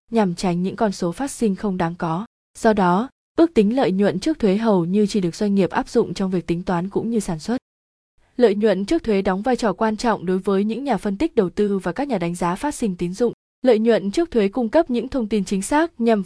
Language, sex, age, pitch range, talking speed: Vietnamese, female, 20-39, 185-230 Hz, 265 wpm